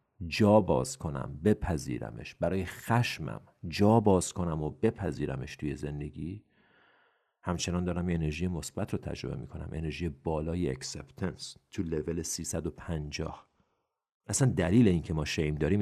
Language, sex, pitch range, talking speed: Persian, male, 75-90 Hz, 130 wpm